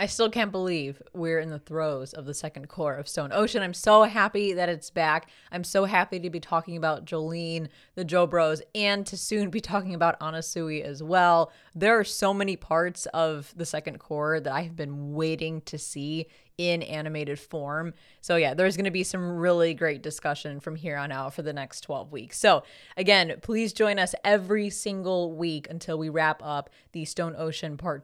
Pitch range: 155-190 Hz